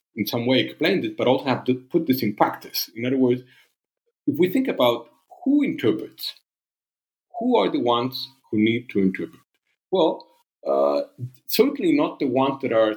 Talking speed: 175 wpm